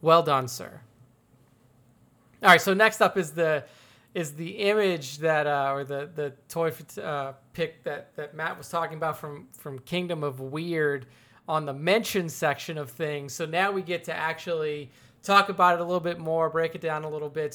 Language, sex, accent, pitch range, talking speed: English, male, American, 145-170 Hz, 195 wpm